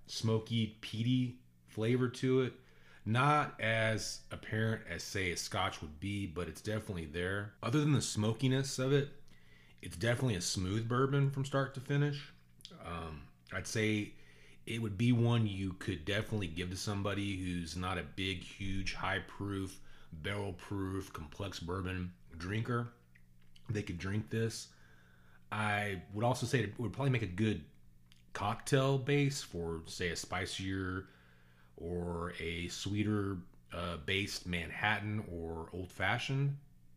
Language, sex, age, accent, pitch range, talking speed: English, male, 30-49, American, 85-110 Hz, 140 wpm